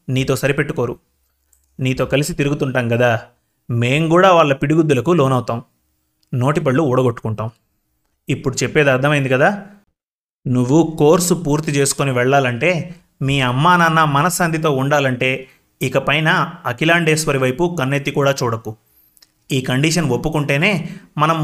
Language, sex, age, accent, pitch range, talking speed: Telugu, male, 30-49, native, 125-170 Hz, 105 wpm